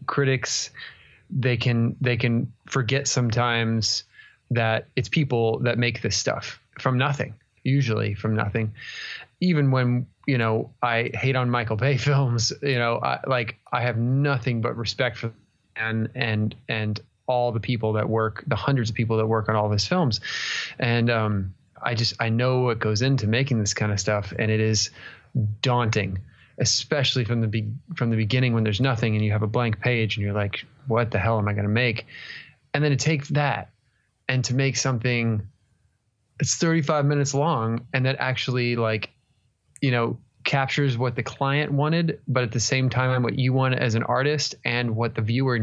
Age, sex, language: 20-39, male, English